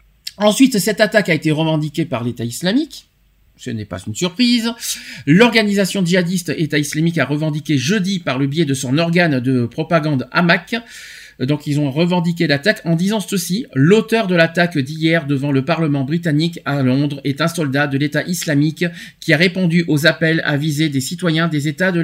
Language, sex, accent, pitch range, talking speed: French, male, French, 150-205 Hz, 180 wpm